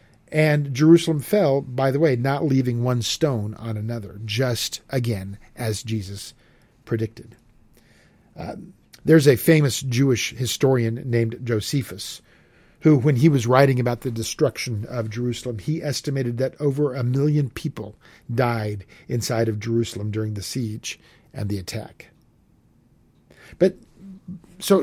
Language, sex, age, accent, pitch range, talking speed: English, male, 50-69, American, 115-165 Hz, 130 wpm